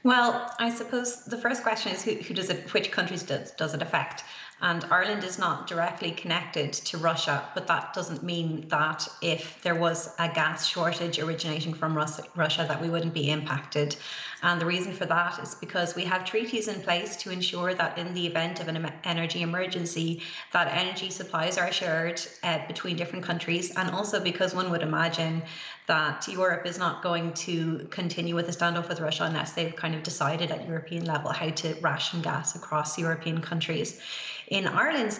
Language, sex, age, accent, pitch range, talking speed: English, female, 30-49, Irish, 165-185 Hz, 190 wpm